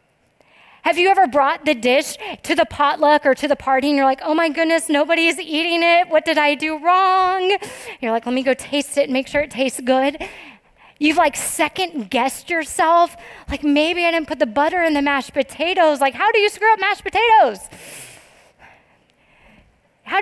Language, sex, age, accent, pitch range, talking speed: English, female, 30-49, American, 230-305 Hz, 195 wpm